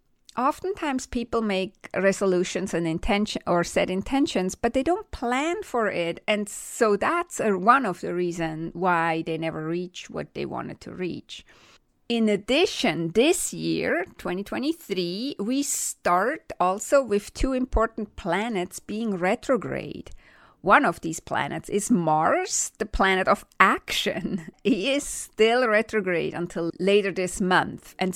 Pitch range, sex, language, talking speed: 185-270 Hz, female, English, 135 wpm